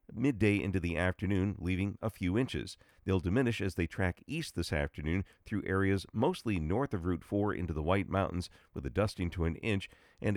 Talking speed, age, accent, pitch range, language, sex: 195 wpm, 50-69, American, 90-110 Hz, English, male